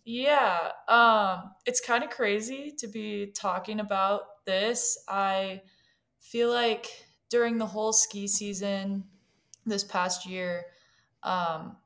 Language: English